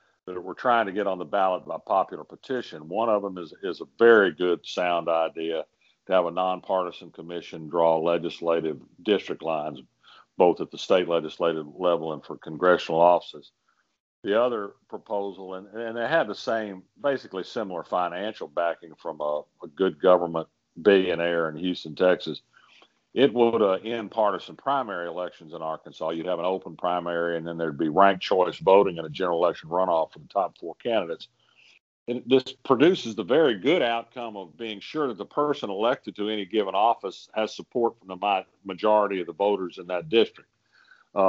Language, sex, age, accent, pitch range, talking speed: English, male, 50-69, American, 85-110 Hz, 180 wpm